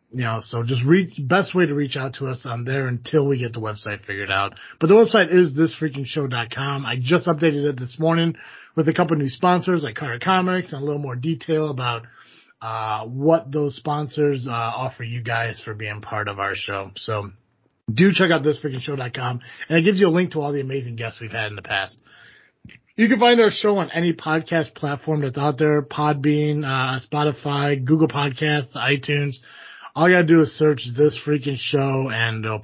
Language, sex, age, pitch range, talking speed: English, male, 30-49, 110-155 Hz, 205 wpm